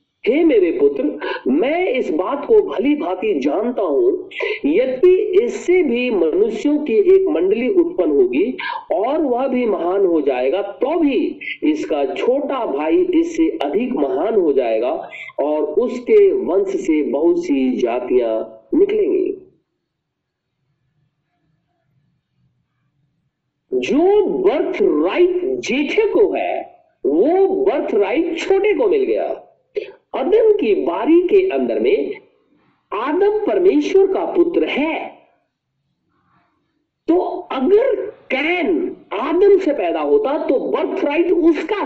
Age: 50-69